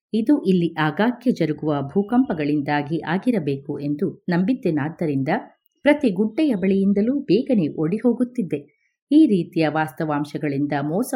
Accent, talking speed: native, 95 wpm